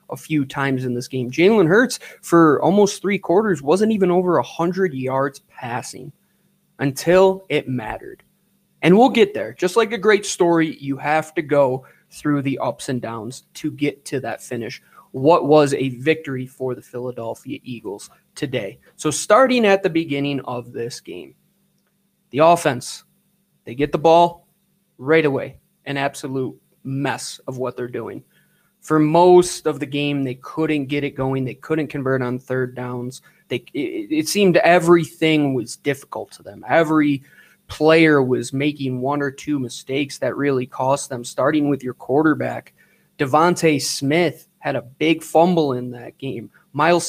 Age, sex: 20-39, male